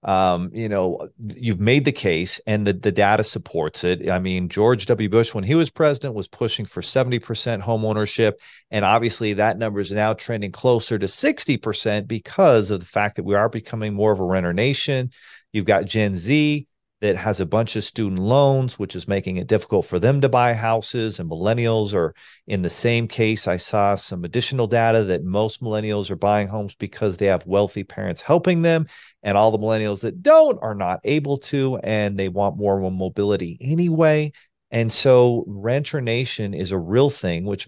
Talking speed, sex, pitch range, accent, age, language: 195 wpm, male, 100-125 Hz, American, 40-59, English